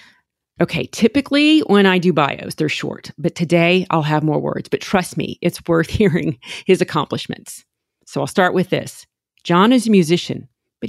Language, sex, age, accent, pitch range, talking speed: English, female, 40-59, American, 150-185 Hz, 175 wpm